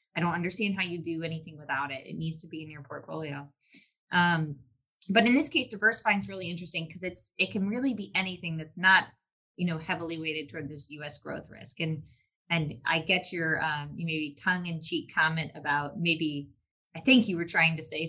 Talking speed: 210 wpm